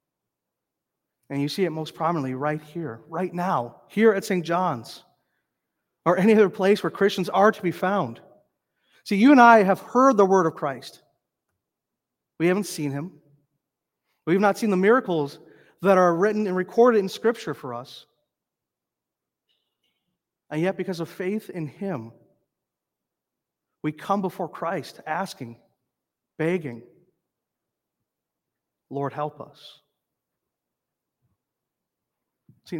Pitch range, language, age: 150-205 Hz, English, 40-59